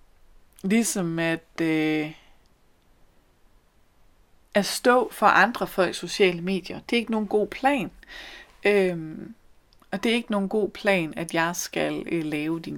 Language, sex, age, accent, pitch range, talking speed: Danish, female, 30-49, native, 175-220 Hz, 140 wpm